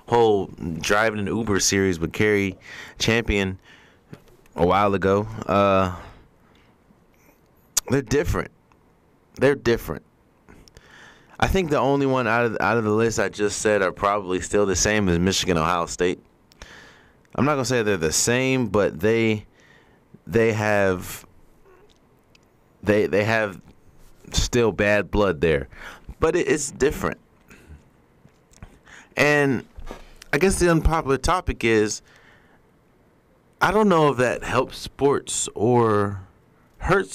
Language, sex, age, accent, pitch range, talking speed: English, male, 20-39, American, 95-120 Hz, 125 wpm